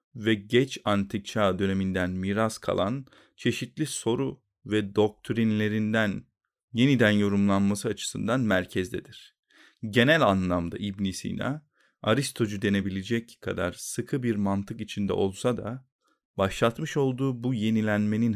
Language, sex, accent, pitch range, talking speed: Turkish, male, native, 100-125 Hz, 105 wpm